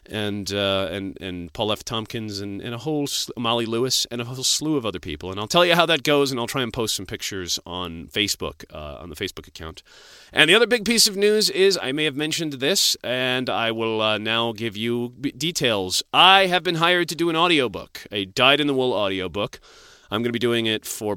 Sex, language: male, English